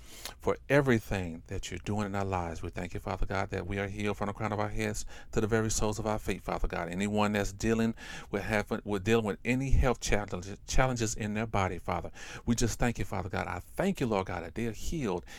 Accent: American